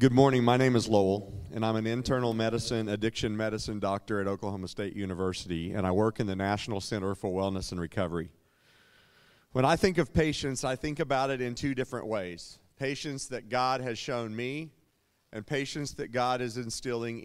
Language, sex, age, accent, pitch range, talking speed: English, male, 40-59, American, 110-140 Hz, 190 wpm